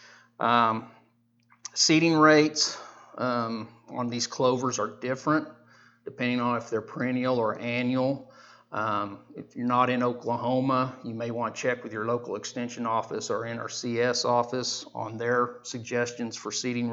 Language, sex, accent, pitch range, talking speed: English, male, American, 115-130 Hz, 140 wpm